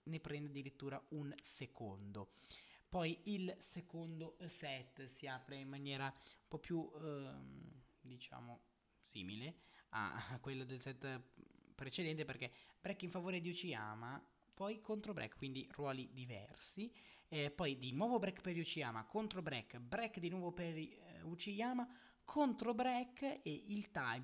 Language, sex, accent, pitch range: Italian, male, native, 130-180 Hz